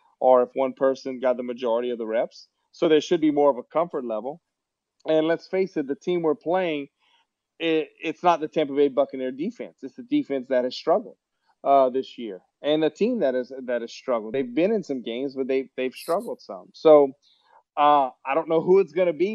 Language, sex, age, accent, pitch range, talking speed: English, male, 30-49, American, 135-170 Hz, 225 wpm